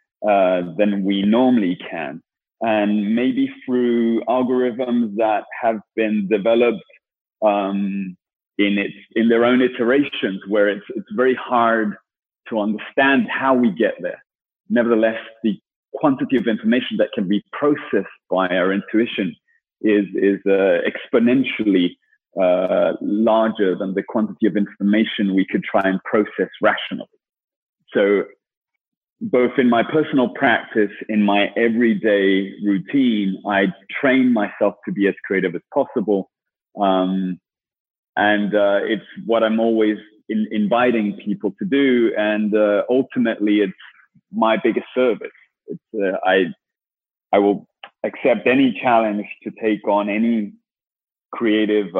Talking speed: 130 wpm